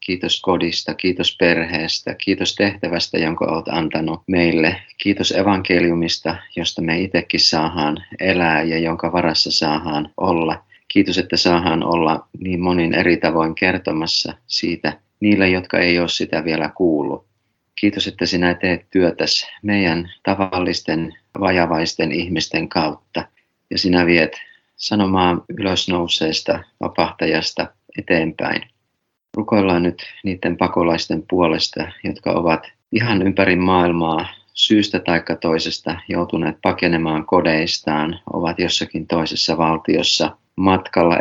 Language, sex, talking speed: Finnish, male, 110 wpm